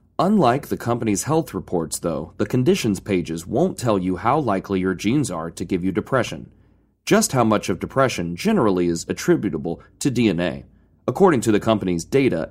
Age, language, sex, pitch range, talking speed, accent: 30-49, English, male, 95-125 Hz, 175 wpm, American